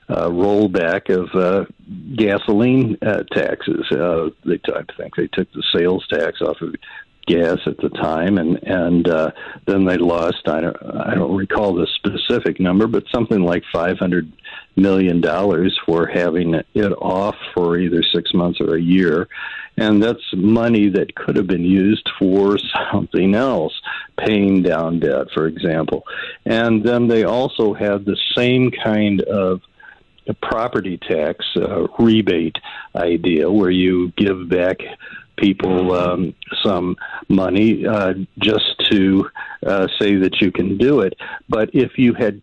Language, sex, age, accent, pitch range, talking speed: English, male, 60-79, American, 90-115 Hz, 150 wpm